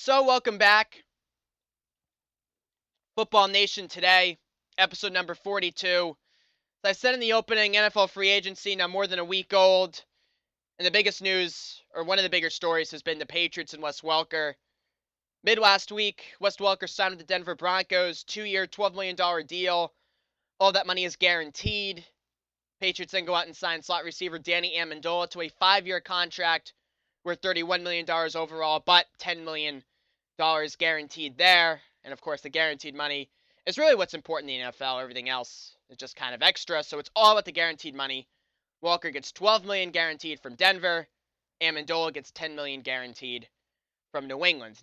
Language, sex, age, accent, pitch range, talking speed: English, male, 20-39, American, 160-190 Hz, 170 wpm